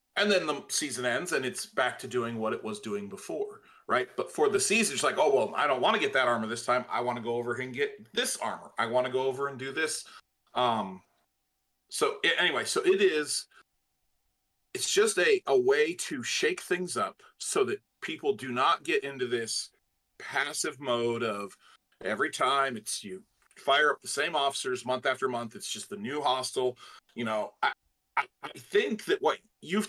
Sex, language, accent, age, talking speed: male, English, American, 40-59, 205 wpm